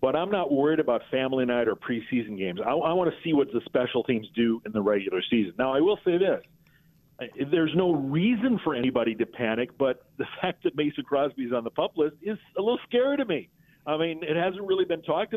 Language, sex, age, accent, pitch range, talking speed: English, male, 50-69, American, 120-165 Hz, 230 wpm